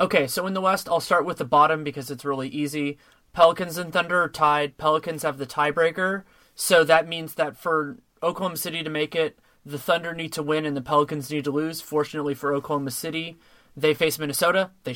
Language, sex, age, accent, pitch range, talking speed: English, male, 30-49, American, 140-160 Hz, 210 wpm